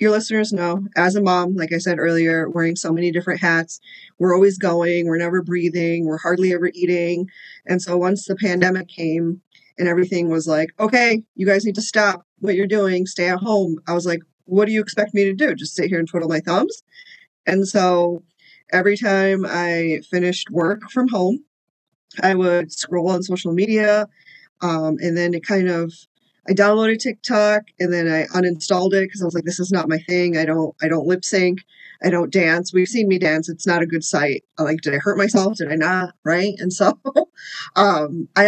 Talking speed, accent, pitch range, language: 210 wpm, American, 170-200 Hz, English